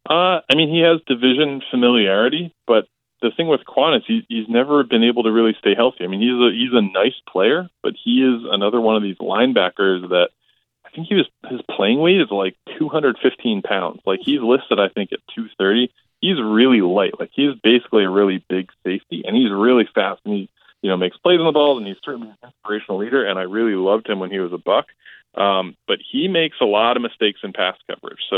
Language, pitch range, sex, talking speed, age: English, 95-130 Hz, male, 230 wpm, 20-39